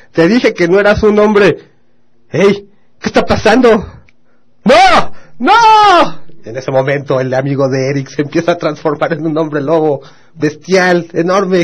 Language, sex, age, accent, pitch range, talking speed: Spanish, male, 30-49, Mexican, 125-170 Hz, 155 wpm